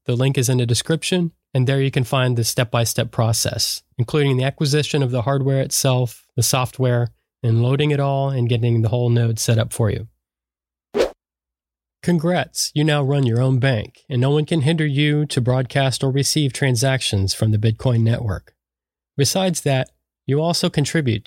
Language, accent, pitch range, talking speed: English, American, 115-145 Hz, 180 wpm